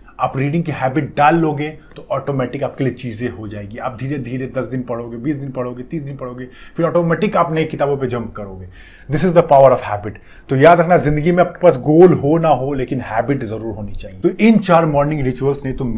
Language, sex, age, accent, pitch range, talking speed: Hindi, male, 30-49, native, 115-150 Hz, 110 wpm